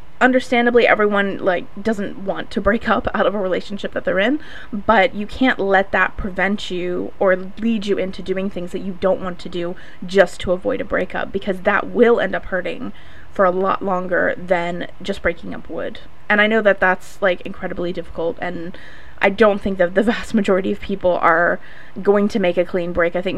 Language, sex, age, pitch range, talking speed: English, female, 20-39, 185-215 Hz, 210 wpm